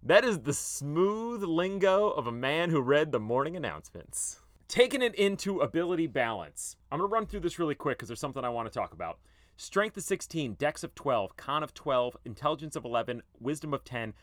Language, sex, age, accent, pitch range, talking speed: English, male, 30-49, American, 115-165 Hz, 205 wpm